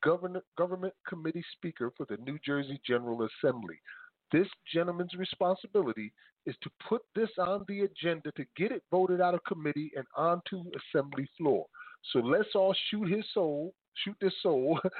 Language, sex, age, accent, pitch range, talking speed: English, male, 40-59, American, 160-210 Hz, 160 wpm